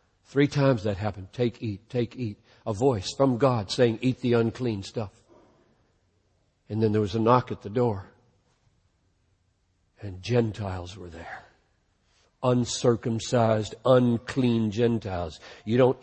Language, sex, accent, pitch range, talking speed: English, male, American, 105-125 Hz, 130 wpm